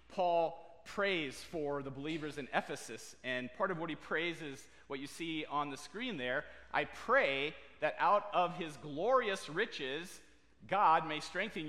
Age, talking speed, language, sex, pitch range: 40-59, 165 wpm, English, male, 140-195 Hz